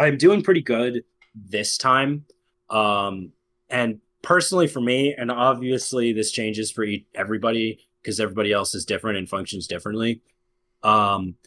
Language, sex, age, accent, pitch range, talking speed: English, male, 20-39, American, 110-140 Hz, 135 wpm